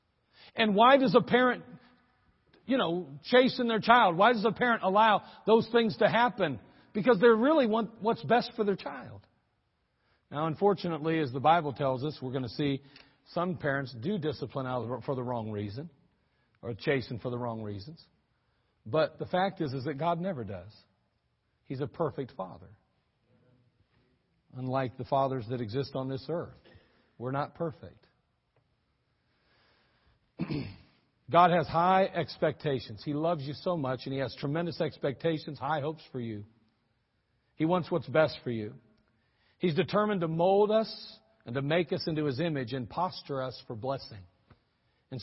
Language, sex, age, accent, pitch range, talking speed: English, male, 50-69, American, 125-175 Hz, 160 wpm